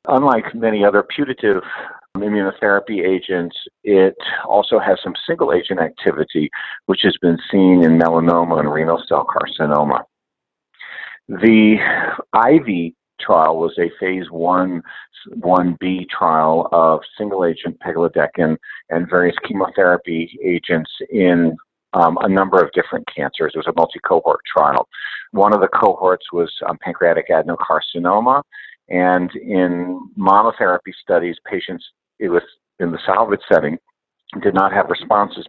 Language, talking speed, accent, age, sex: English, 130 wpm, American, 50-69, male